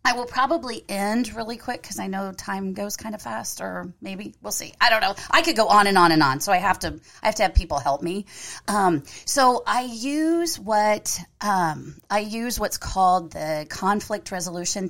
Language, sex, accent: English, female, American